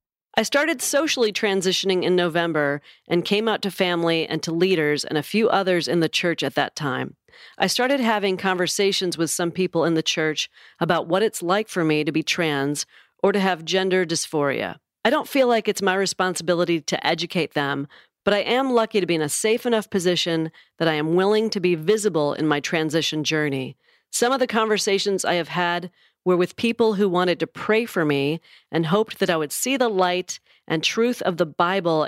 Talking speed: 205 wpm